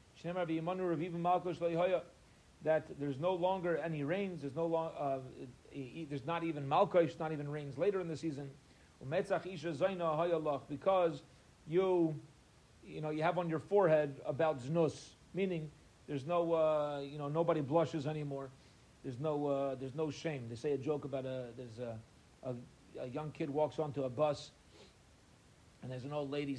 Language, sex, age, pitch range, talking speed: English, male, 40-59, 130-160 Hz, 155 wpm